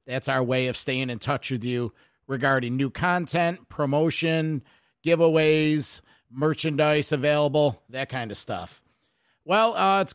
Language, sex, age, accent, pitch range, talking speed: English, male, 50-69, American, 130-160 Hz, 135 wpm